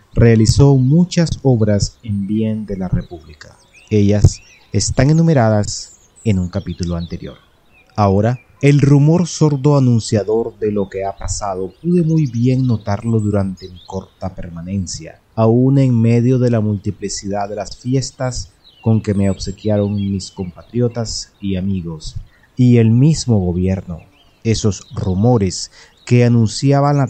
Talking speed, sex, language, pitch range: 130 wpm, male, Spanish, 95-120 Hz